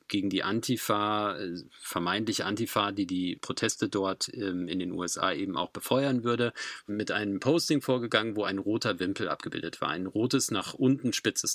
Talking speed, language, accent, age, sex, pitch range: 160 wpm, German, German, 40-59, male, 105-135 Hz